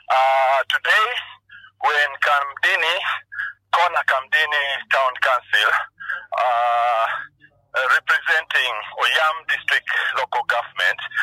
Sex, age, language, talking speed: male, 50-69, English, 80 wpm